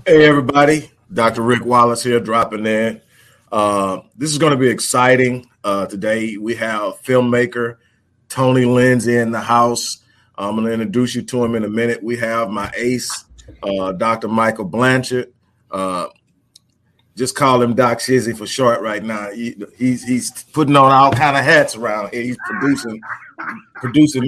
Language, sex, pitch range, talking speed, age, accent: English, male, 115-135 Hz, 165 wpm, 30-49, American